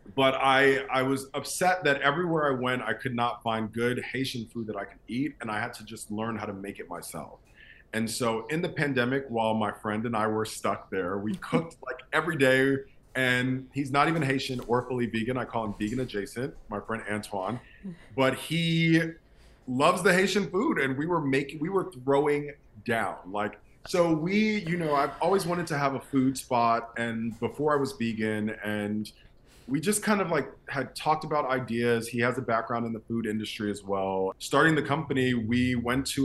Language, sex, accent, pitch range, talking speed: English, male, American, 110-140 Hz, 205 wpm